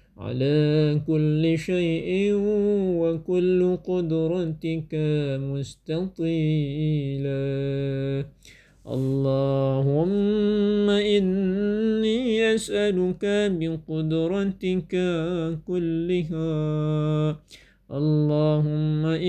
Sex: male